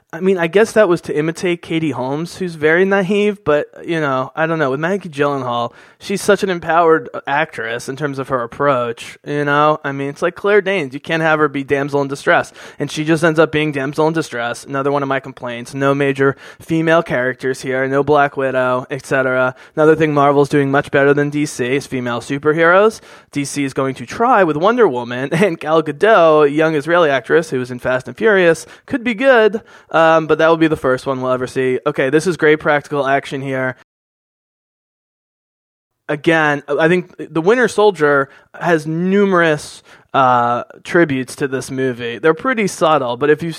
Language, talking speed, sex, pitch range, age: English, 195 wpm, male, 130-165 Hz, 20-39